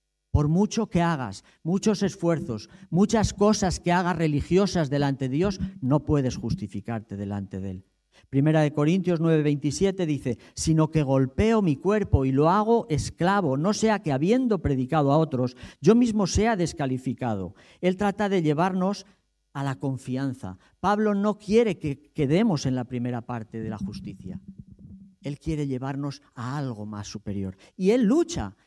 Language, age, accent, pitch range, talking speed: Spanish, 50-69, Spanish, 130-200 Hz, 155 wpm